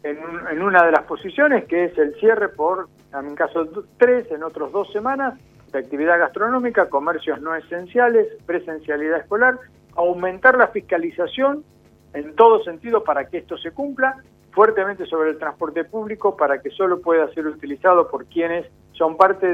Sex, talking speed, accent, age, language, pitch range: male, 160 wpm, Argentinian, 50-69, Spanish, 155-215 Hz